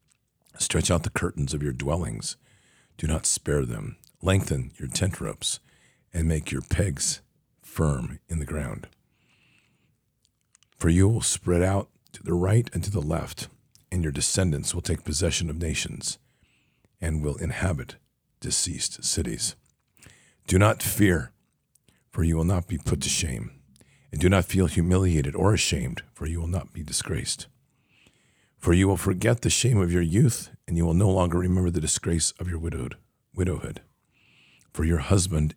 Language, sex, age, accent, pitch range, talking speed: English, male, 50-69, American, 75-95 Hz, 160 wpm